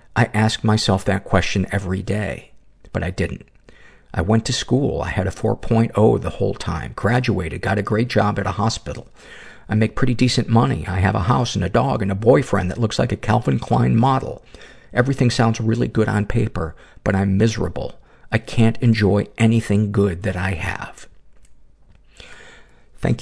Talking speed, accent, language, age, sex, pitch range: 180 wpm, American, English, 50-69, male, 95-115 Hz